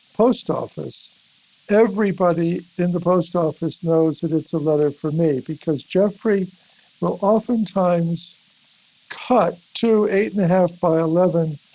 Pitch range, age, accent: 165-200 Hz, 60-79, American